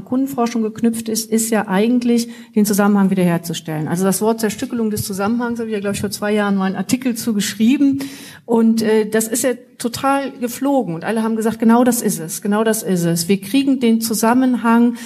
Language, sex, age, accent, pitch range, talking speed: German, female, 40-59, German, 205-255 Hz, 200 wpm